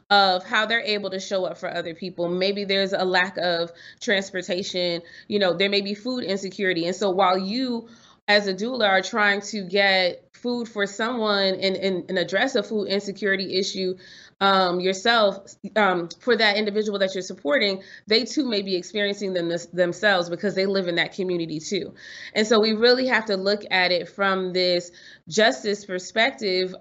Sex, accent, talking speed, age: female, American, 180 wpm, 30-49